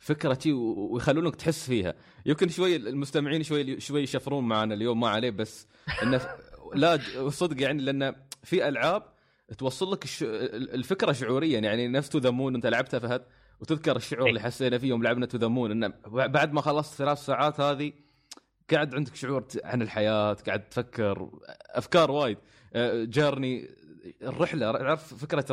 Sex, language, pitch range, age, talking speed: male, Arabic, 110-145 Hz, 20-39, 135 wpm